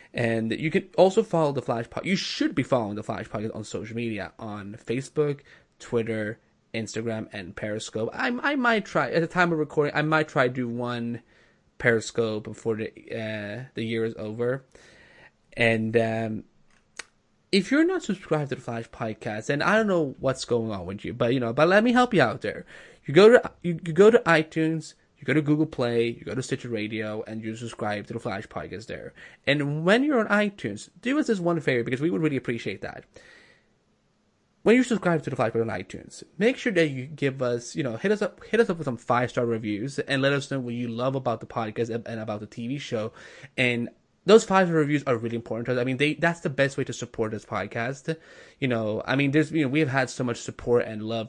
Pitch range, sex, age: 115-160 Hz, male, 20-39